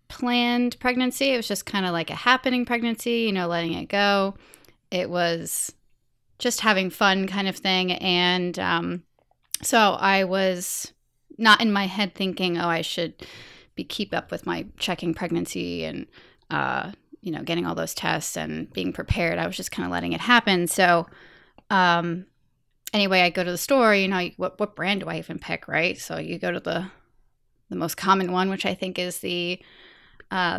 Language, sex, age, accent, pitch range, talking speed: English, female, 20-39, American, 175-205 Hz, 190 wpm